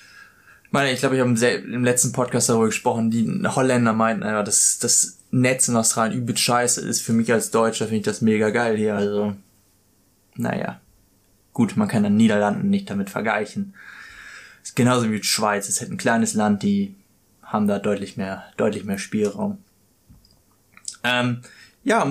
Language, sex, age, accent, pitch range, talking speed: German, male, 20-39, German, 105-130 Hz, 165 wpm